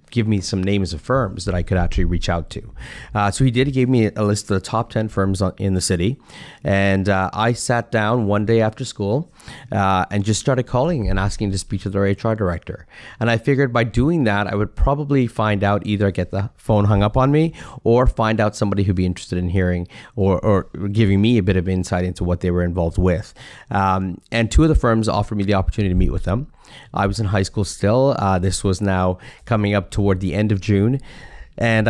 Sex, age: male, 30-49